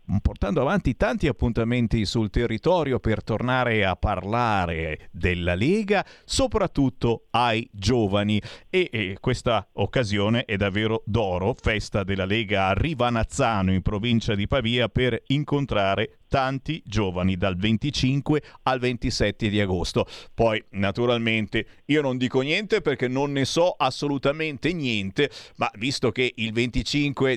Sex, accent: male, native